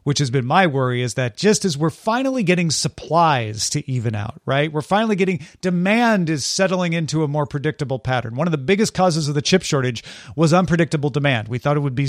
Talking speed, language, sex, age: 225 wpm, English, male, 40-59